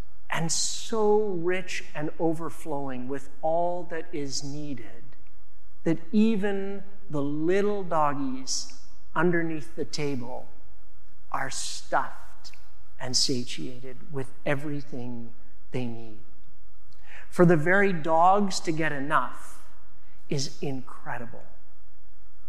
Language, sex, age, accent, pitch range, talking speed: English, male, 40-59, American, 130-185 Hz, 95 wpm